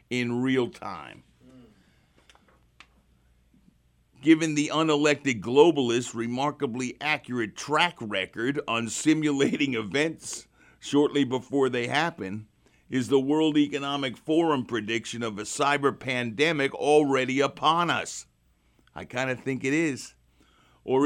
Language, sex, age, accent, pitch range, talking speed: English, male, 50-69, American, 115-145 Hz, 110 wpm